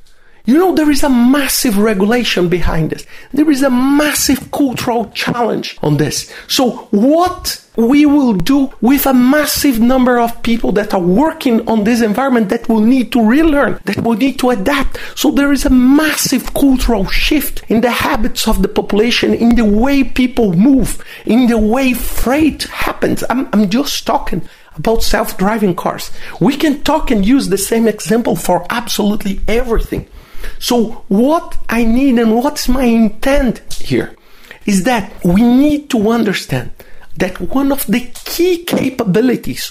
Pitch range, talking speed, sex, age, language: 210-280 Hz, 160 wpm, male, 50-69, English